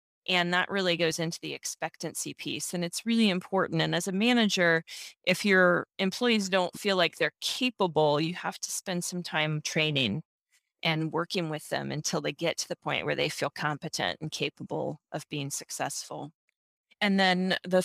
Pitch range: 165-200 Hz